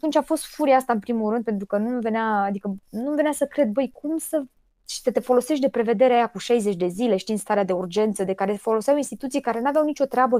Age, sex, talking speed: 20-39, female, 235 wpm